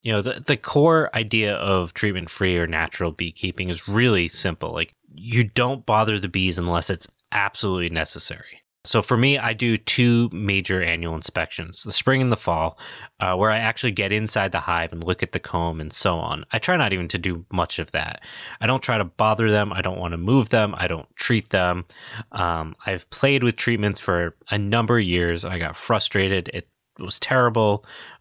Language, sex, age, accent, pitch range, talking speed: English, male, 20-39, American, 90-115 Hz, 210 wpm